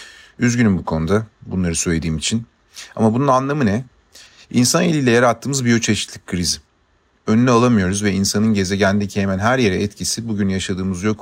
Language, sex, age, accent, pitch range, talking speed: Turkish, male, 40-59, native, 95-115 Hz, 145 wpm